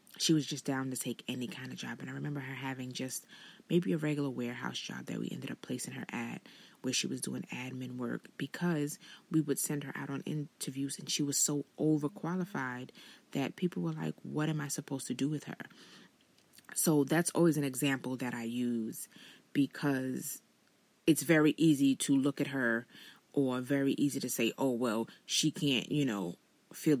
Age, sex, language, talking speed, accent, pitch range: 20-39, female, English, 195 wpm, American, 125-150 Hz